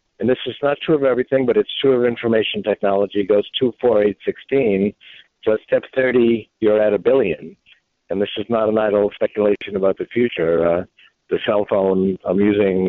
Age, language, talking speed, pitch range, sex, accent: 60-79, English, 200 wpm, 100-125 Hz, male, American